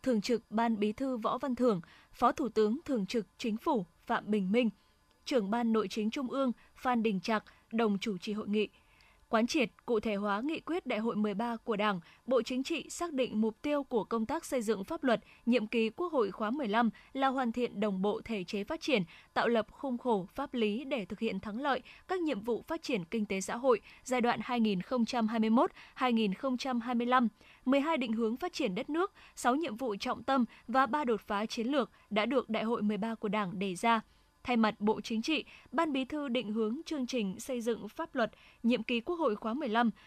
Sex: female